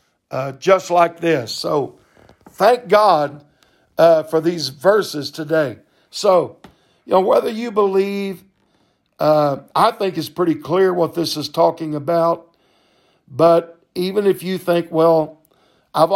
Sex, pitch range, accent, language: male, 155-185 Hz, American, English